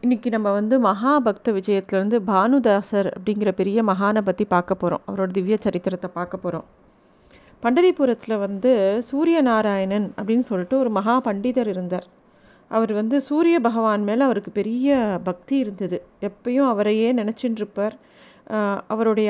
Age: 30-49